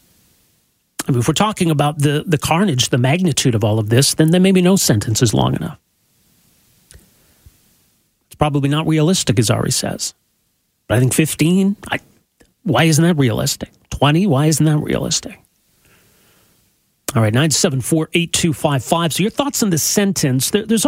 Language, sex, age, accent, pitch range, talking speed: English, male, 40-59, American, 125-165 Hz, 175 wpm